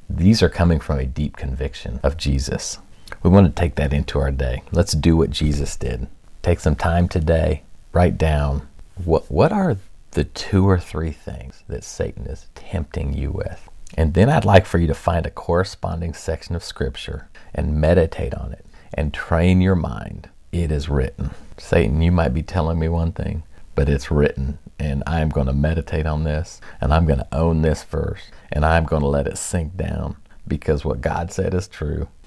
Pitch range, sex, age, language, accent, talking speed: 70-85 Hz, male, 50-69, English, American, 195 wpm